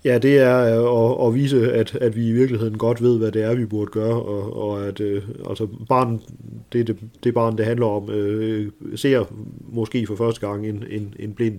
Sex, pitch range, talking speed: male, 100-115 Hz, 240 wpm